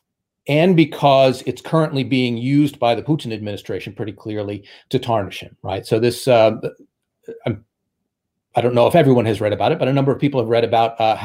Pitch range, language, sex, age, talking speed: 115-145 Hz, English, male, 40-59, 205 wpm